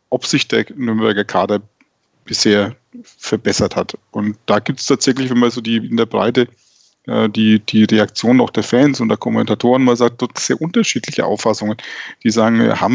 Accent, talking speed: German, 175 wpm